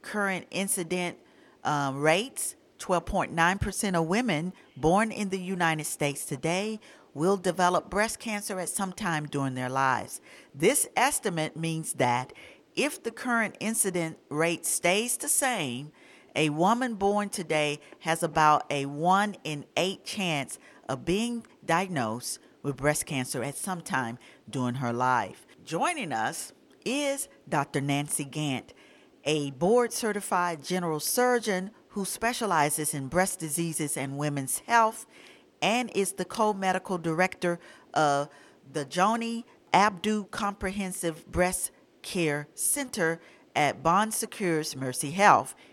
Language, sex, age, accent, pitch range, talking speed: English, female, 50-69, American, 150-210 Hz, 125 wpm